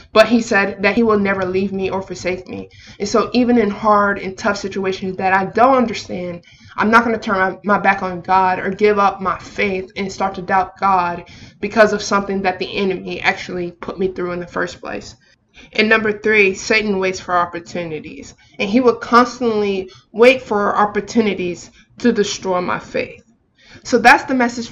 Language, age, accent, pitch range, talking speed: English, 20-39, American, 190-215 Hz, 190 wpm